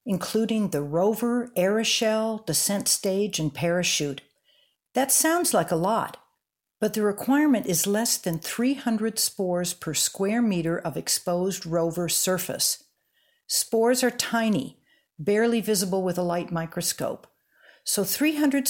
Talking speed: 125 wpm